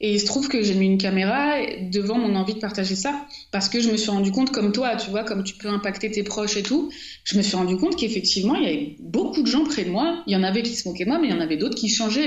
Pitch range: 185-245 Hz